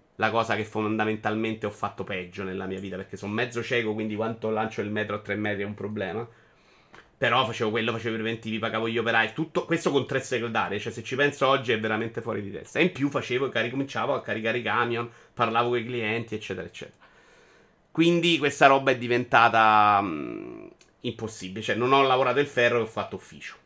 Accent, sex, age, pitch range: native, male, 30-49, 105-125 Hz